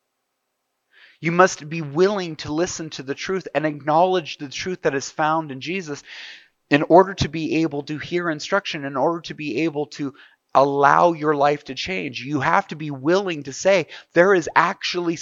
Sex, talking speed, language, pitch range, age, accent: male, 185 wpm, English, 120-165 Hz, 30-49, American